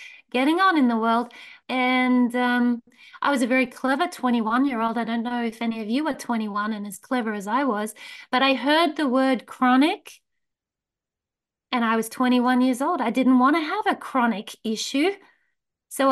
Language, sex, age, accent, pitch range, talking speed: English, female, 20-39, Australian, 235-280 Hz, 185 wpm